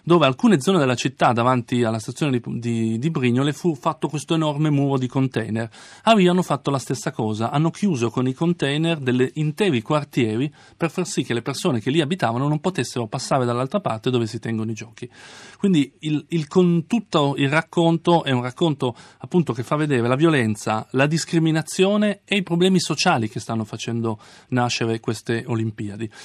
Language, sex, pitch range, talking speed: Italian, male, 120-165 Hz, 180 wpm